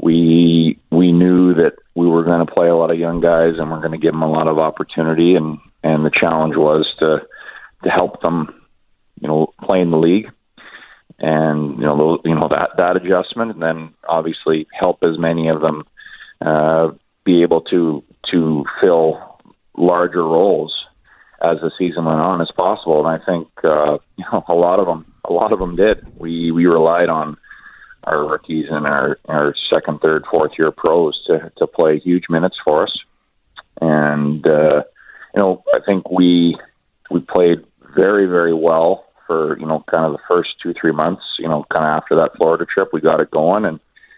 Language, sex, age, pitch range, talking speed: English, male, 30-49, 80-85 Hz, 190 wpm